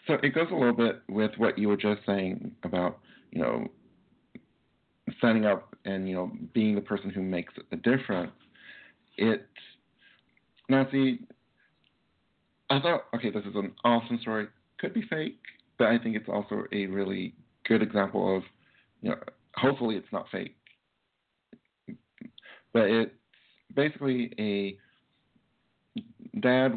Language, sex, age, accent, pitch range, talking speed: English, male, 50-69, American, 95-120 Hz, 140 wpm